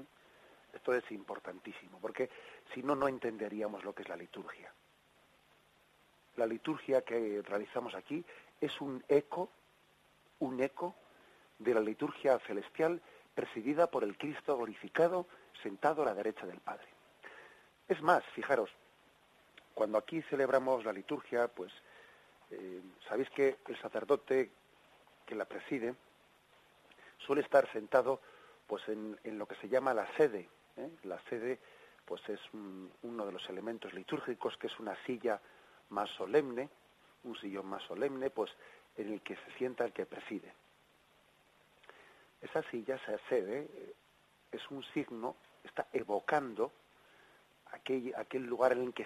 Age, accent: 40-59, Spanish